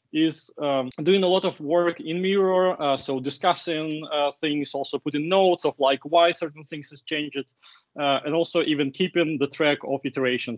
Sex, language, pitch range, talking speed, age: male, English, 140-180 Hz, 185 wpm, 20-39